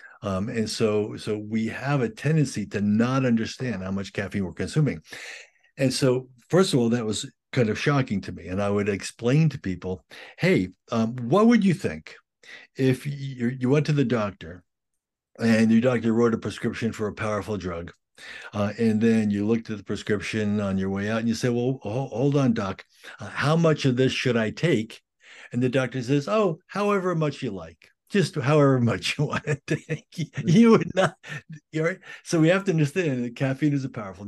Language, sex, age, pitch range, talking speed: English, male, 60-79, 105-140 Hz, 205 wpm